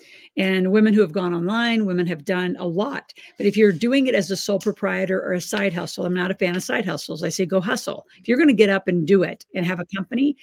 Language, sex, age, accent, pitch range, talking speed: English, female, 50-69, American, 185-210 Hz, 275 wpm